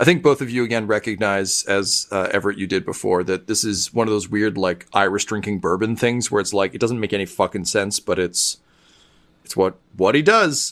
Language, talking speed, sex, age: English, 230 wpm, male, 40-59